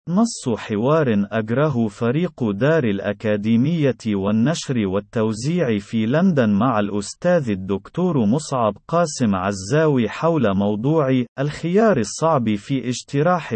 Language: Arabic